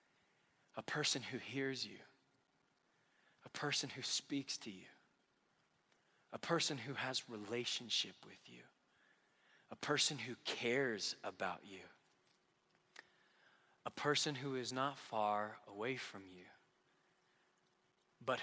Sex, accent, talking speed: male, American, 110 wpm